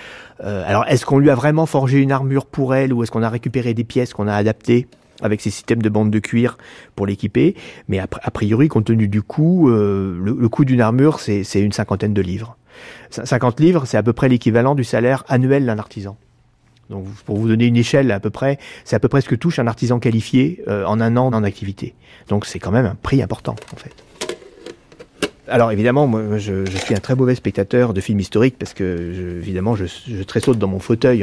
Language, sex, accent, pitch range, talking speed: French, male, French, 105-130 Hz, 215 wpm